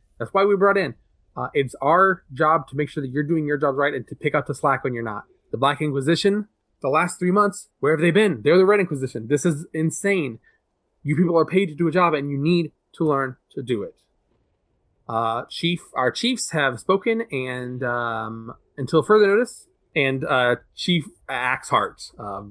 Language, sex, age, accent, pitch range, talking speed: English, male, 20-39, American, 120-155 Hz, 210 wpm